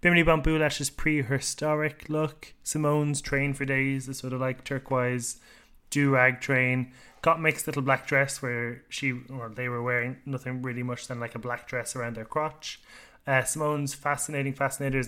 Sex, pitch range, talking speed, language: male, 120-140 Hz, 175 wpm, English